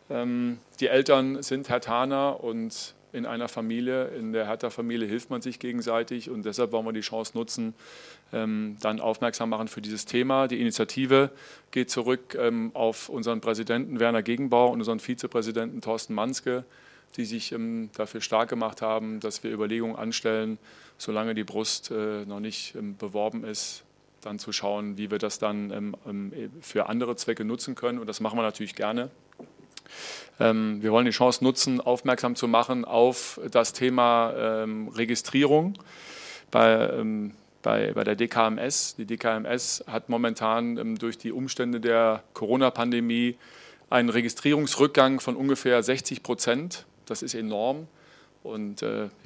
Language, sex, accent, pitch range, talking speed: German, male, German, 110-125 Hz, 145 wpm